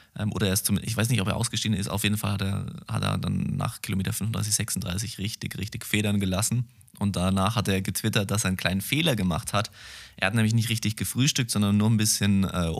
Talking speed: 235 wpm